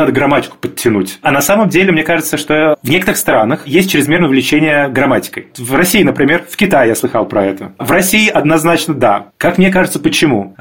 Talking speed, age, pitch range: 190 wpm, 30-49, 140-175 Hz